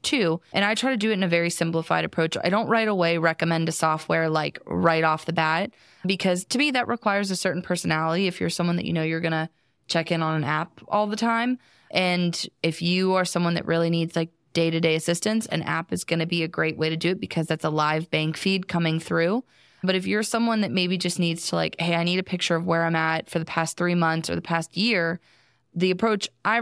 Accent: American